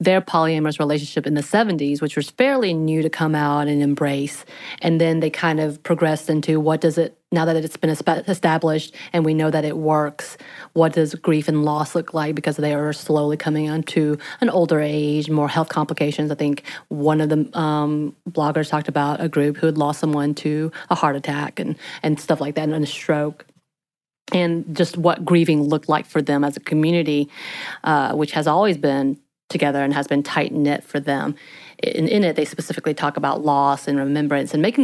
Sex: female